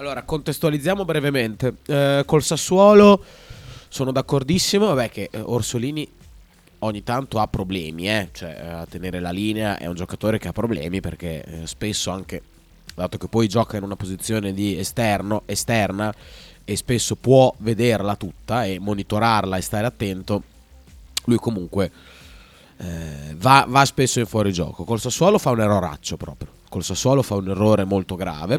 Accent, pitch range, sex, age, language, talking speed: native, 95-135 Hz, male, 30-49, Italian, 155 wpm